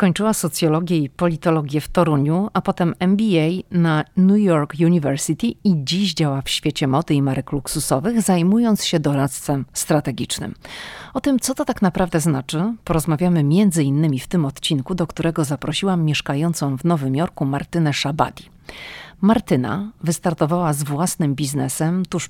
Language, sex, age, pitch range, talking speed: Polish, female, 40-59, 145-180 Hz, 145 wpm